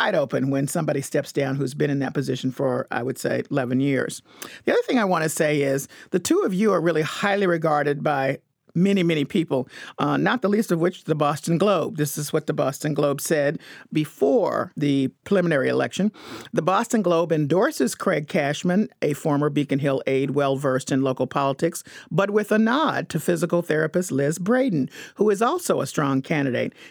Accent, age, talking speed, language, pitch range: American, 50-69, 190 wpm, English, 140-180 Hz